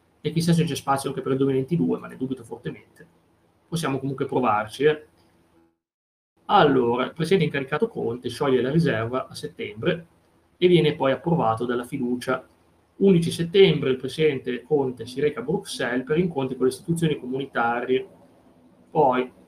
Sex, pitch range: male, 125-155 Hz